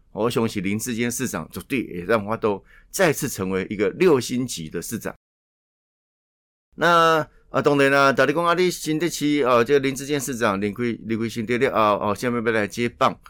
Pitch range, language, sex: 100-135 Hz, Chinese, male